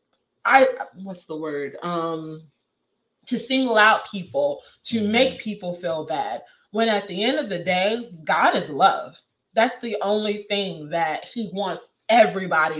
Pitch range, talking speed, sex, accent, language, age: 175-215 Hz, 150 wpm, female, American, English, 20-39